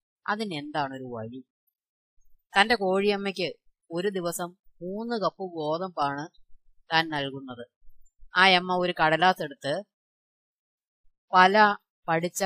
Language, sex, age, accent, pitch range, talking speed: Malayalam, female, 20-39, native, 145-185 Hz, 85 wpm